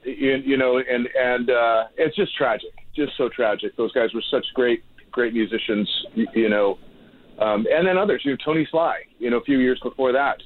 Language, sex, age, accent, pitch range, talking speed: English, male, 40-59, American, 115-145 Hz, 210 wpm